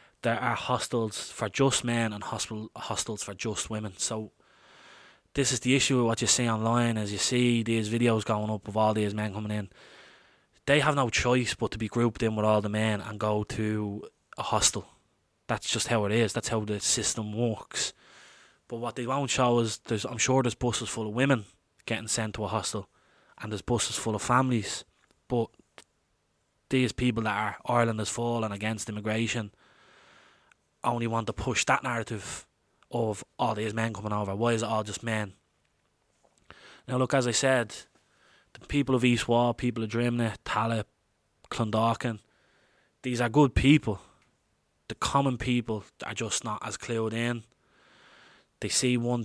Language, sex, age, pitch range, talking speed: English, male, 20-39, 105-120 Hz, 180 wpm